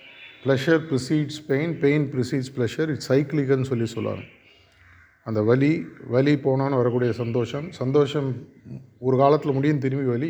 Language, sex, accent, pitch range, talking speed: Tamil, male, native, 110-135 Hz, 130 wpm